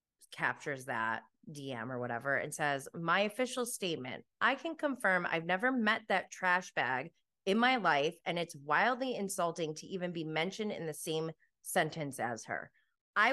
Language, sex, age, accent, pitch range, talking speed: English, female, 20-39, American, 155-220 Hz, 165 wpm